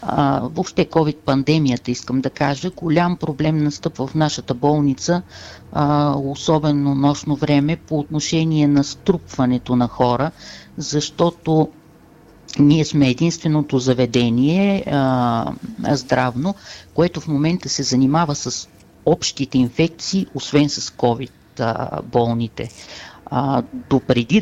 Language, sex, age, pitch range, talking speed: Bulgarian, female, 50-69, 130-160 Hz, 100 wpm